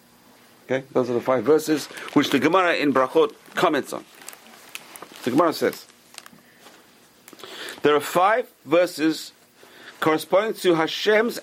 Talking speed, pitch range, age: 120 wpm, 130-180 Hz, 50-69